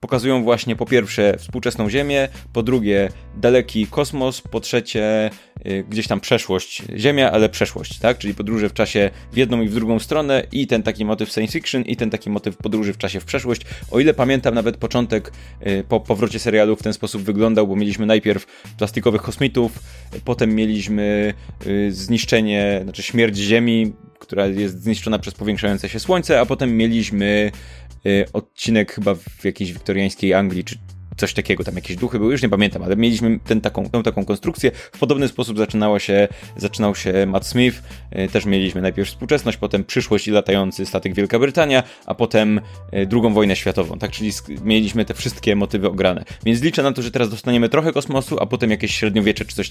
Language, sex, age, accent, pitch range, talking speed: Polish, male, 20-39, native, 100-120 Hz, 175 wpm